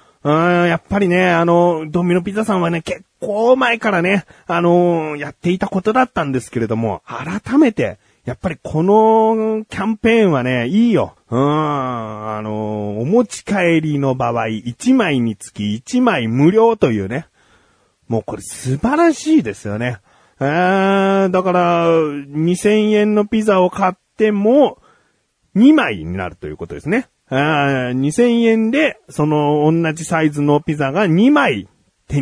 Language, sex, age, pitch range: Japanese, male, 40-59, 135-210 Hz